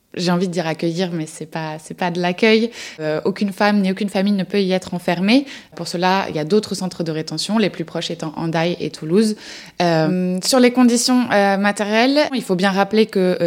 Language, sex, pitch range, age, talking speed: French, female, 175-205 Hz, 20-39, 225 wpm